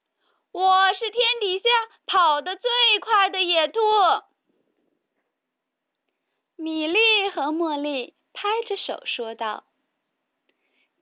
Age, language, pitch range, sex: 30-49, Chinese, 295-405 Hz, female